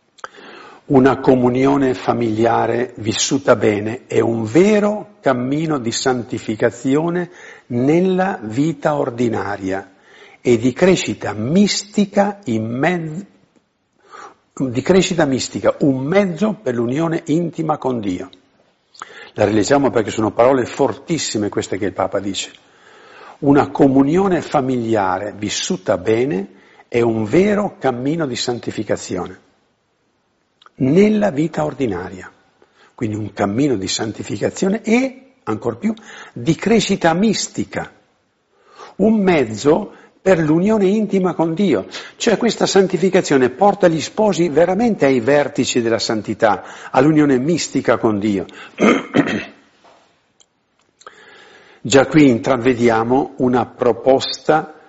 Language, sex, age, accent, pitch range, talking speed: Italian, male, 50-69, native, 120-185 Hz, 100 wpm